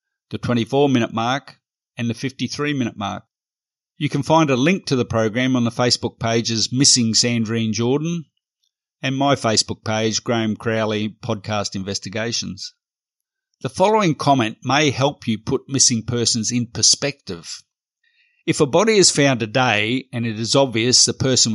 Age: 50-69